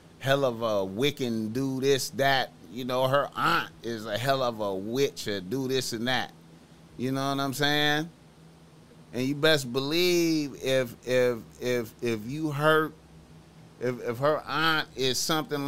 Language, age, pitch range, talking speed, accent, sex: English, 30-49, 110-140 Hz, 165 wpm, American, male